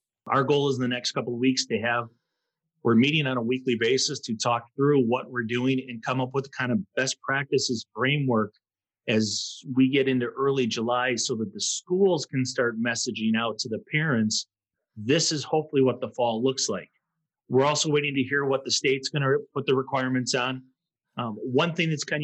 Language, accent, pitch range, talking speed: English, American, 120-145 Hz, 205 wpm